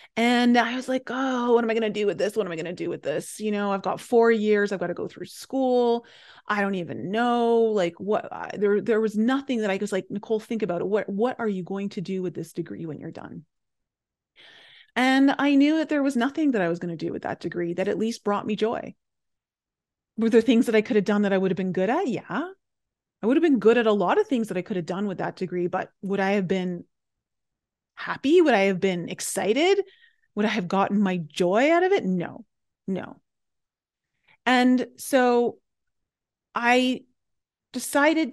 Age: 30-49